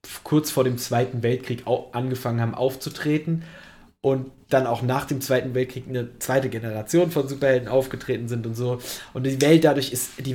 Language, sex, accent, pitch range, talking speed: German, male, German, 125-155 Hz, 175 wpm